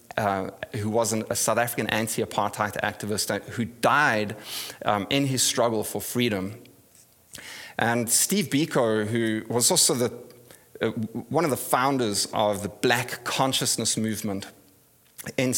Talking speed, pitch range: 125 wpm, 110-135 Hz